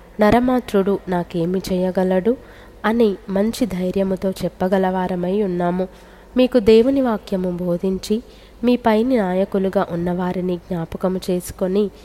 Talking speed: 90 wpm